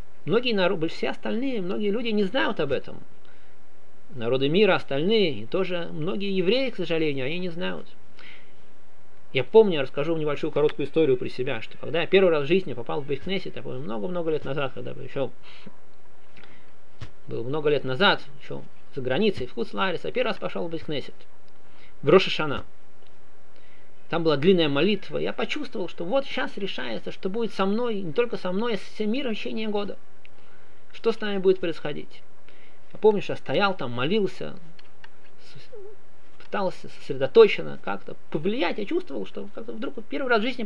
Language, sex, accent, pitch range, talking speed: Russian, male, native, 175-235 Hz, 175 wpm